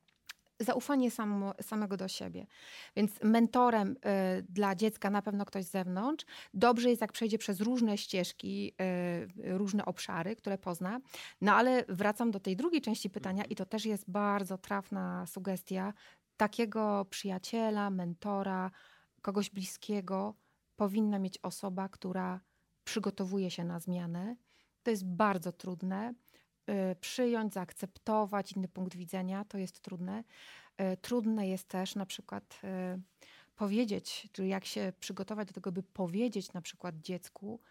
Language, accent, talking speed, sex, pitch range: Polish, native, 130 wpm, female, 185-215 Hz